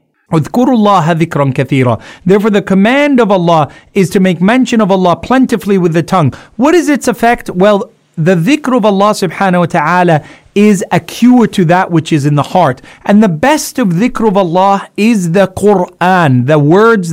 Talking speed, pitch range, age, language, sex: 175 wpm, 170-220 Hz, 30-49, English, male